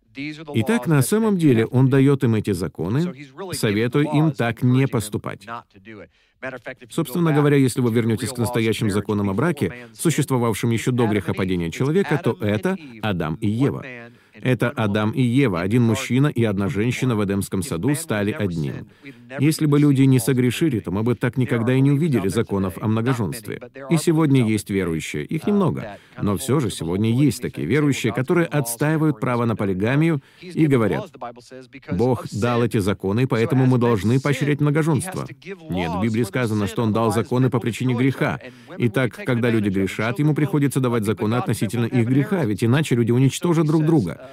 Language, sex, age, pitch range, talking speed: Russian, male, 40-59, 110-140 Hz, 165 wpm